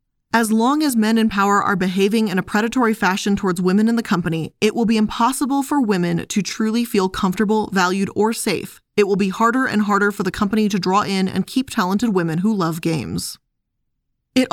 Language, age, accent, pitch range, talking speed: English, 20-39, American, 180-225 Hz, 205 wpm